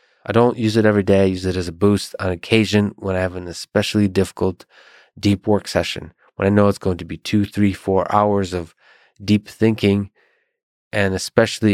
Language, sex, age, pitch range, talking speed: English, male, 20-39, 90-105 Hz, 200 wpm